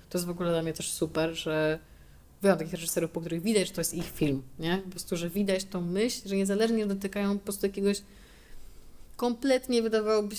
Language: Polish